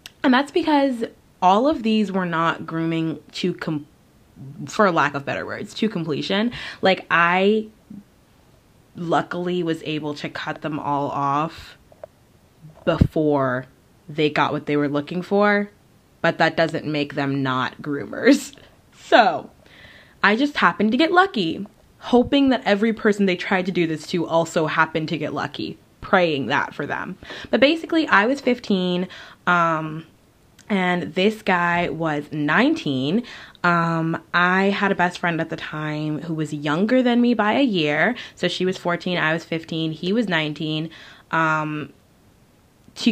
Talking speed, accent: 150 wpm, American